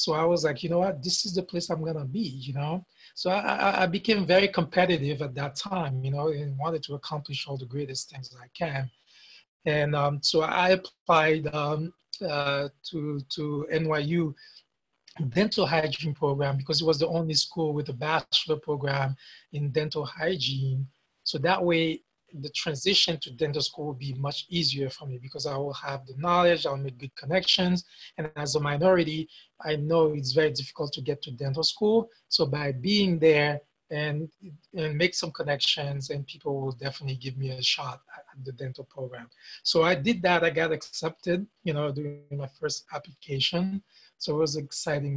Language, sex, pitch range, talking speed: English, male, 140-170 Hz, 190 wpm